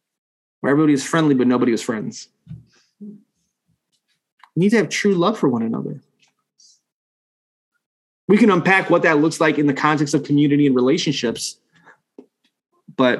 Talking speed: 145 wpm